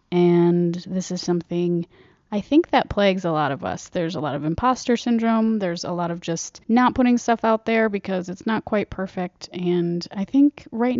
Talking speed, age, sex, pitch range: 200 wpm, 30-49, female, 180-225 Hz